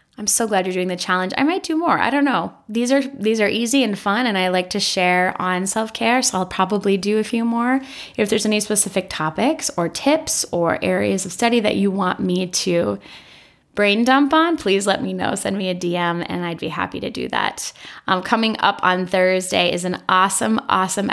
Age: 10-29